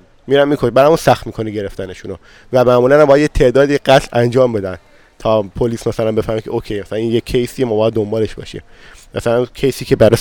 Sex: male